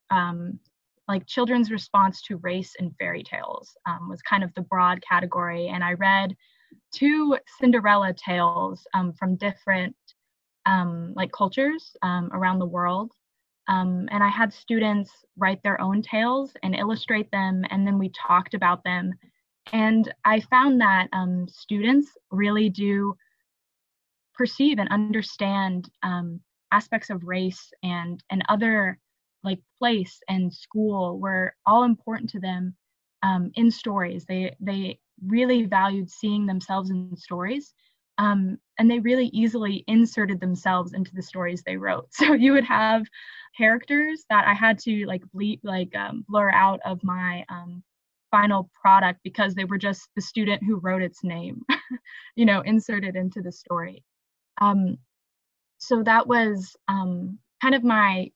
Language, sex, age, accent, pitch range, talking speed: English, female, 10-29, American, 185-225 Hz, 150 wpm